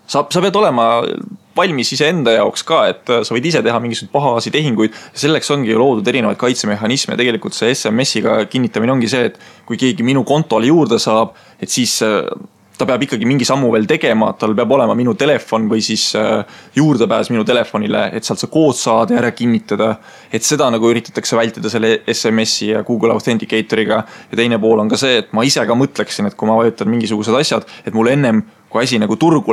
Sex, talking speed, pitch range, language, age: male, 195 wpm, 110-125 Hz, English, 20-39